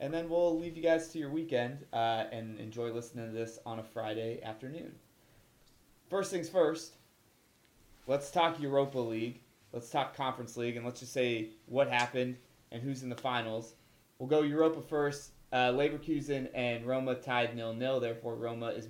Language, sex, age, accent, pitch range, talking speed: English, male, 20-39, American, 115-140 Hz, 175 wpm